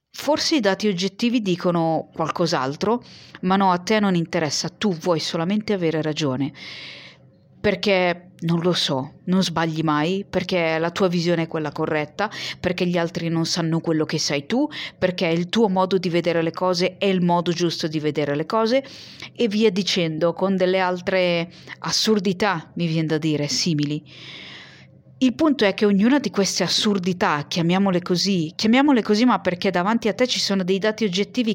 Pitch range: 165-210 Hz